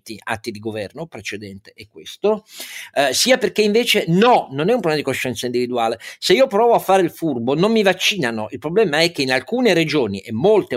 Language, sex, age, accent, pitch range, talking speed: Italian, male, 50-69, native, 125-205 Hz, 205 wpm